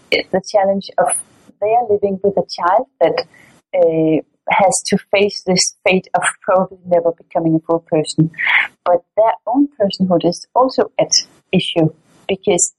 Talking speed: 150 wpm